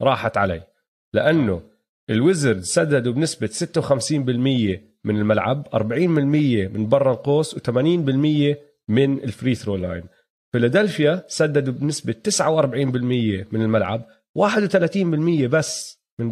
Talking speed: 100 wpm